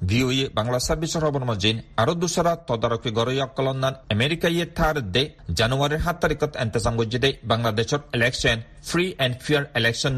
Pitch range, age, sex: 115-155 Hz, 40-59, male